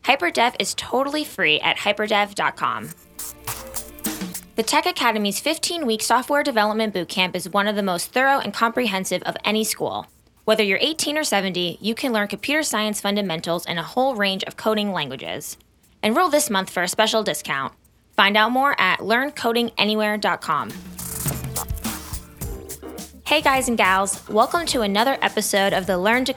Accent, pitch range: American, 195-255 Hz